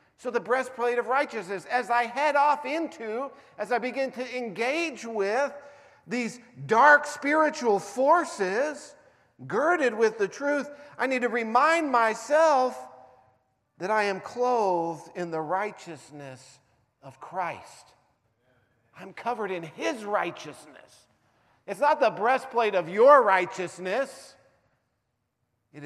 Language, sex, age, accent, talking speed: English, male, 50-69, American, 120 wpm